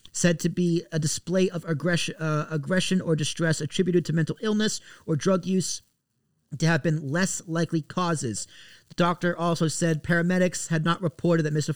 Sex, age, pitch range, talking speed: male, 30-49, 150-175 Hz, 175 wpm